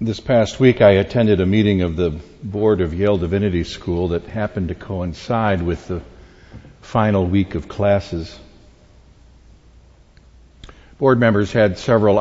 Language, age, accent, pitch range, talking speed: English, 60-79, American, 90-105 Hz, 140 wpm